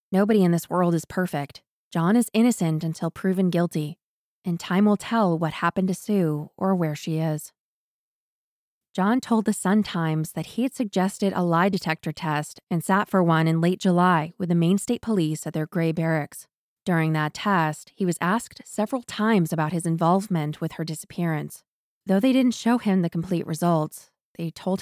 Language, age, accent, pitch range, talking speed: English, 20-39, American, 165-200 Hz, 185 wpm